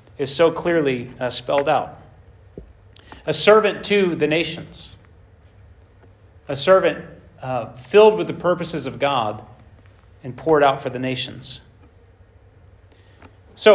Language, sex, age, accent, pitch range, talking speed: English, male, 30-49, American, 100-150 Hz, 120 wpm